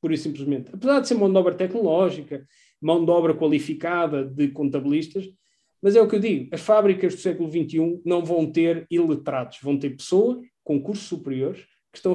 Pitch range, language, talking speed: 145-195 Hz, Portuguese, 195 wpm